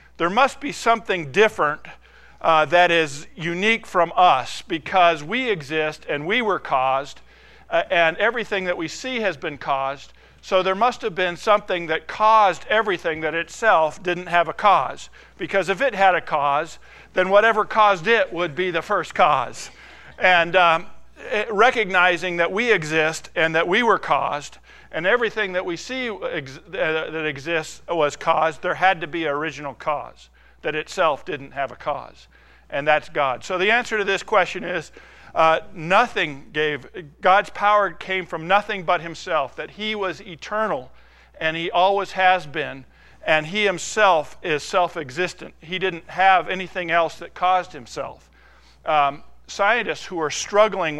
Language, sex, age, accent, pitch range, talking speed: English, male, 50-69, American, 160-200 Hz, 160 wpm